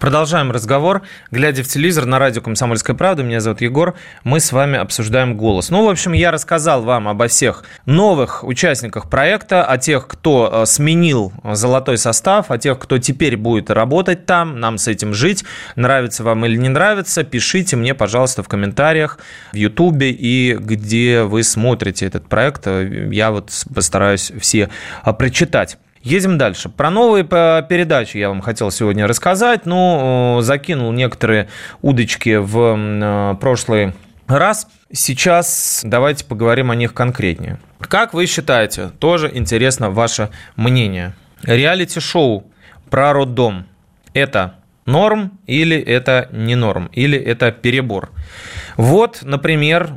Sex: male